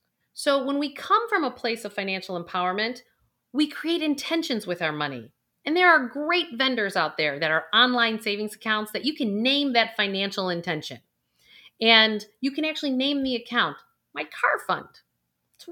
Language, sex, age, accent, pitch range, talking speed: English, female, 40-59, American, 185-295 Hz, 175 wpm